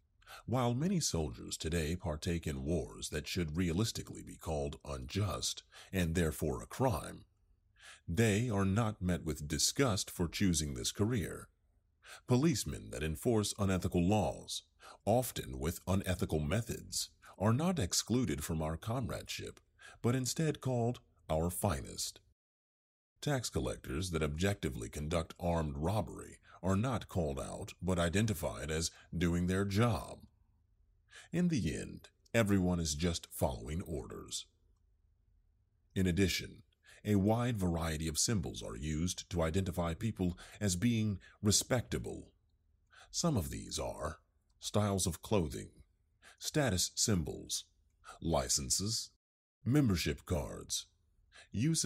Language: English